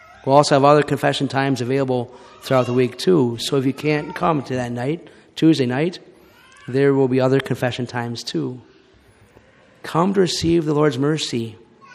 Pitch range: 125-155 Hz